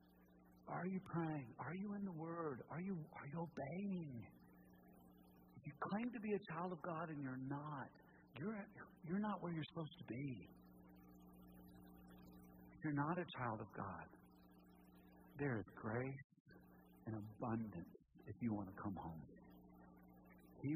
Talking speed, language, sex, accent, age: 145 wpm, English, male, American, 60-79